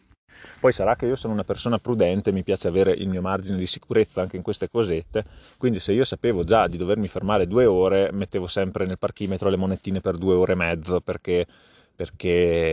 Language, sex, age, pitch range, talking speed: Italian, male, 30-49, 90-105 Hz, 205 wpm